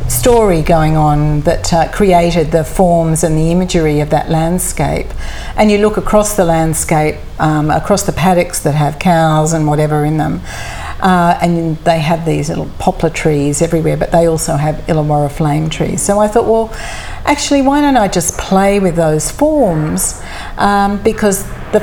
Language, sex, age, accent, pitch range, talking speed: English, female, 50-69, Australian, 155-190 Hz, 175 wpm